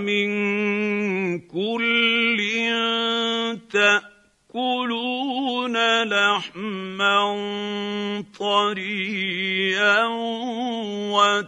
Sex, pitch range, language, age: male, 205-250 Hz, Arabic, 50-69